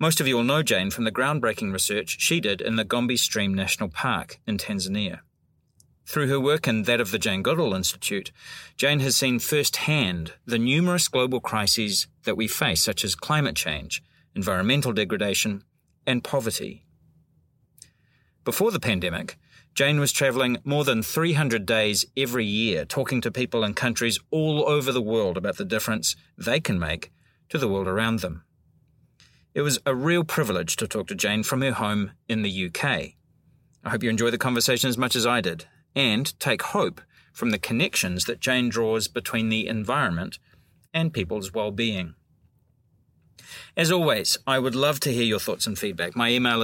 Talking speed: 175 wpm